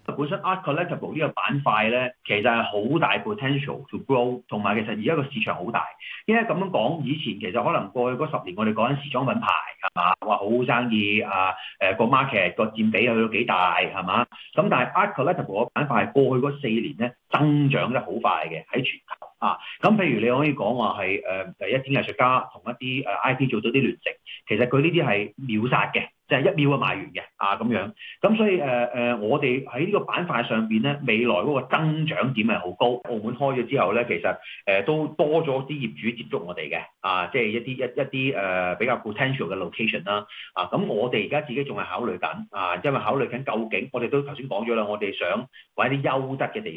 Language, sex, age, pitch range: Chinese, male, 30-49, 110-145 Hz